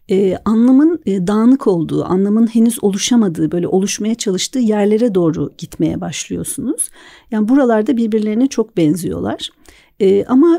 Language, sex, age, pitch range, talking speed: Turkish, female, 50-69, 185-235 Hz, 125 wpm